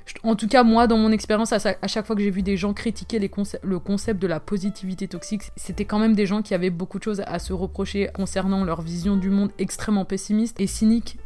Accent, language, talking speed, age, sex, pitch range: French, French, 245 wpm, 20-39, female, 190-225 Hz